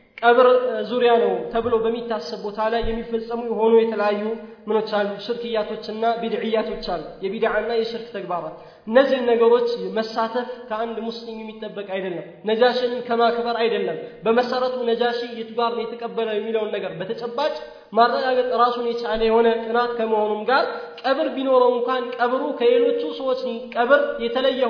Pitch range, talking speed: 225-245 Hz, 130 wpm